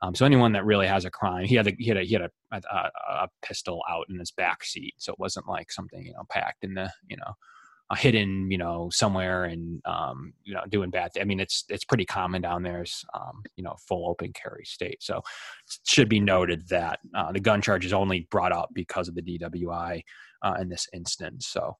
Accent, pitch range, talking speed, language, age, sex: American, 90-100 Hz, 245 wpm, English, 20-39, male